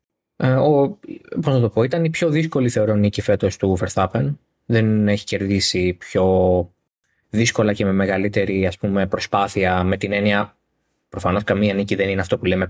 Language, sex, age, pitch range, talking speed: Greek, male, 20-39, 100-135 Hz, 170 wpm